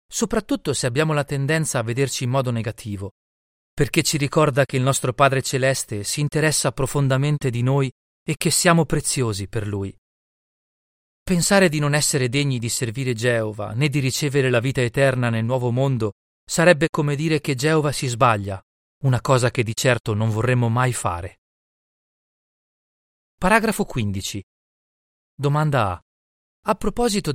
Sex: male